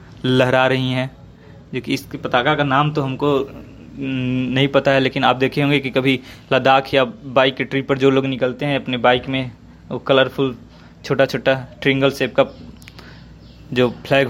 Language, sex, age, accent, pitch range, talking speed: Hindi, male, 20-39, native, 120-135 Hz, 175 wpm